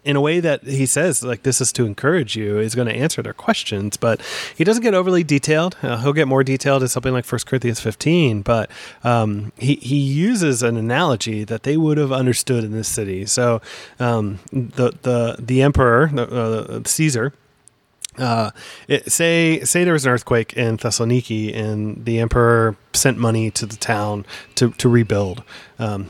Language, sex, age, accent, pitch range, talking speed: English, male, 30-49, American, 115-135 Hz, 180 wpm